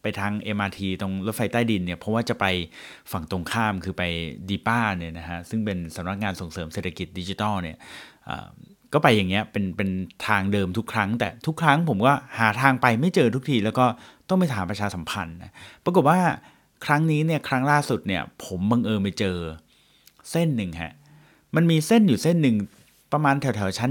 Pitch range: 95-130 Hz